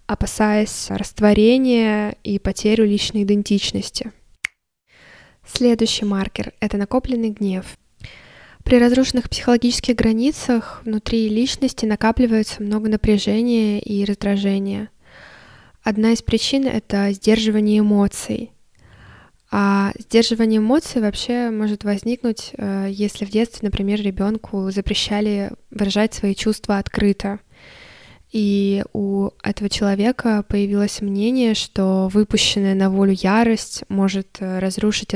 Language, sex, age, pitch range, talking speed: Russian, female, 10-29, 200-225 Hz, 95 wpm